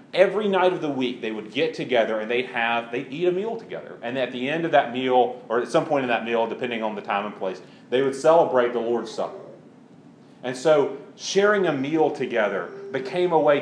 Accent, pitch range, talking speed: American, 120-155 Hz, 225 wpm